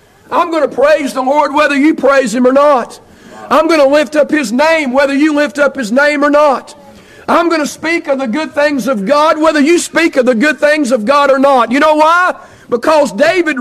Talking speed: 235 wpm